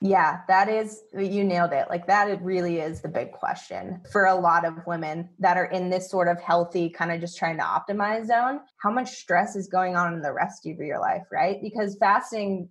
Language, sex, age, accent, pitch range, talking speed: English, female, 20-39, American, 175-210 Hz, 225 wpm